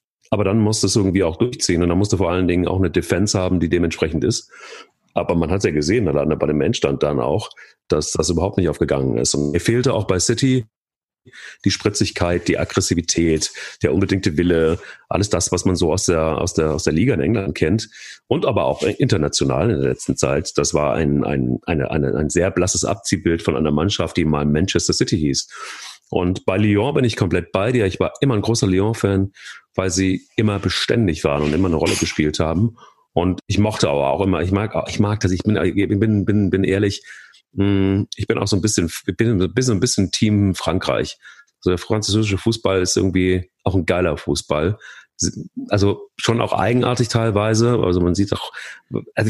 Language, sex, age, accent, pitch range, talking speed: German, male, 40-59, German, 85-110 Hz, 205 wpm